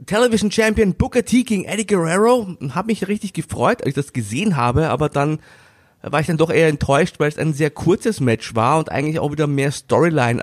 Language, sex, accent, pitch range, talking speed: German, male, German, 135-175 Hz, 215 wpm